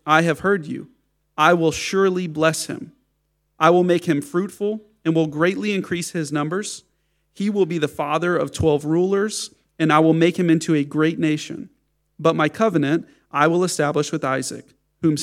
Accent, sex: American, male